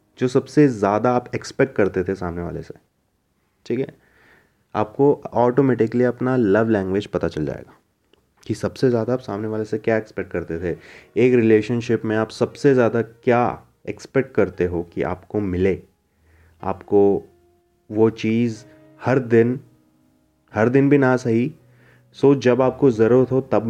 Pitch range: 85-115 Hz